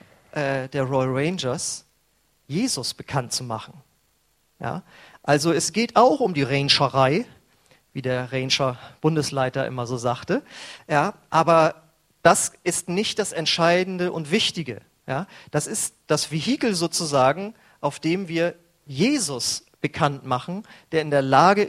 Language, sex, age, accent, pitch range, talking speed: German, male, 40-59, German, 140-200 Hz, 120 wpm